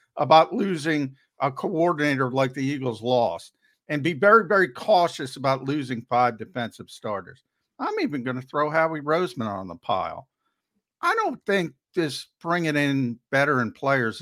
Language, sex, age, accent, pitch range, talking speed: English, male, 50-69, American, 125-185 Hz, 155 wpm